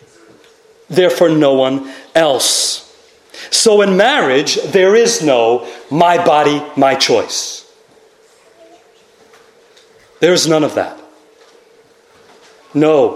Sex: male